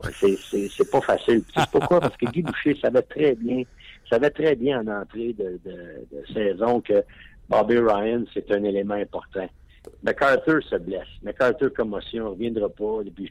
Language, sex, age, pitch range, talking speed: French, male, 60-79, 105-145 Hz, 185 wpm